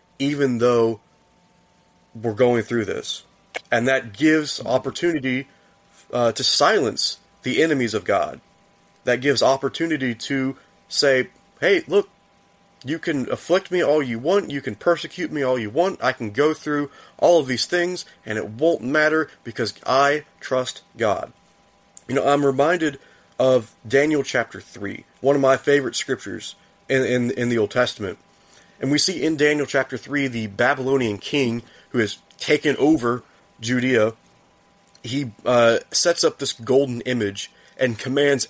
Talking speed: 150 wpm